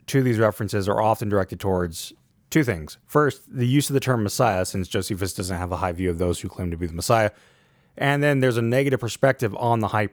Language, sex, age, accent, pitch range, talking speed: English, male, 30-49, American, 95-125 Hz, 235 wpm